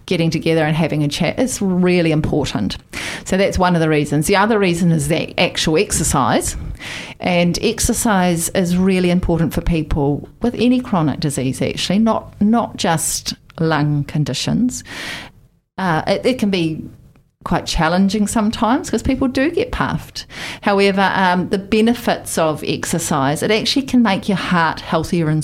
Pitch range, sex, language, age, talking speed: 155-195 Hz, female, English, 40-59, 155 wpm